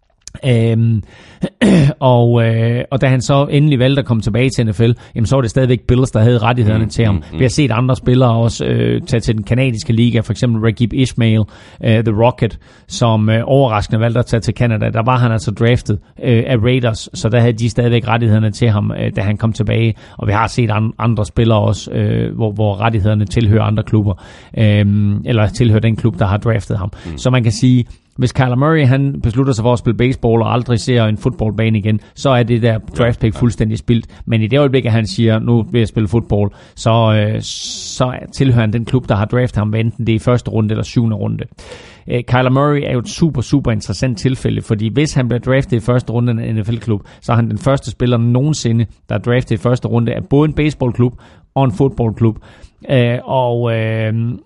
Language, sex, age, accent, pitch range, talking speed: Danish, male, 30-49, native, 110-125 Hz, 220 wpm